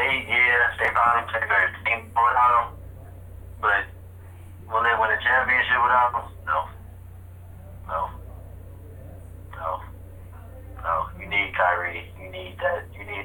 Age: 30-49